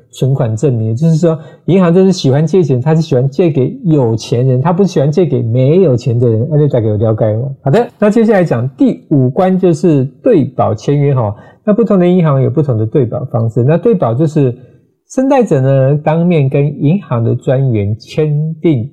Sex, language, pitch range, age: male, Chinese, 120-165 Hz, 50-69